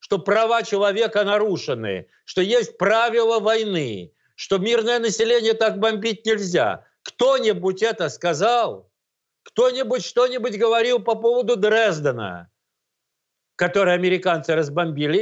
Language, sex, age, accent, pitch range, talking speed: Russian, male, 60-79, native, 170-220 Hz, 105 wpm